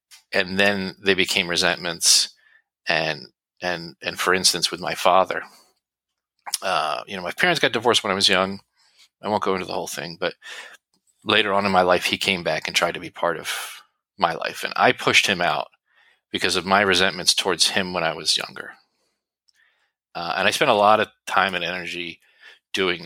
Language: English